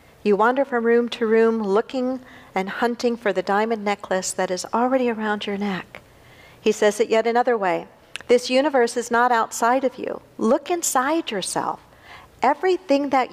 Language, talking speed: English, 165 wpm